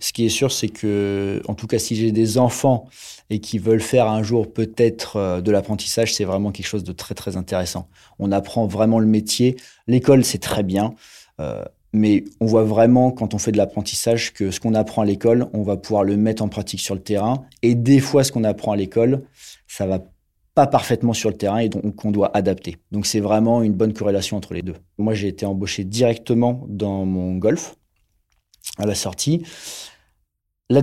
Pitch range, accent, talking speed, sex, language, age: 100-120 Hz, French, 205 wpm, male, French, 30-49